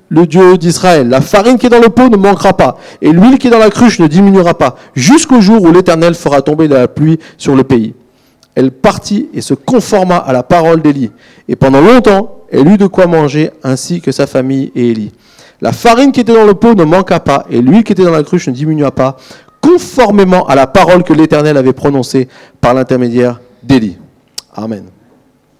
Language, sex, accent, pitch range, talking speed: French, male, French, 150-230 Hz, 210 wpm